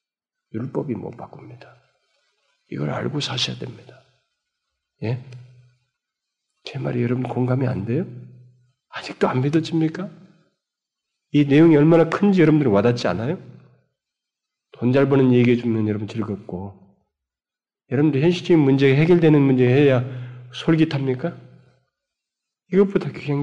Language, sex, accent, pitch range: Korean, male, native, 130-195 Hz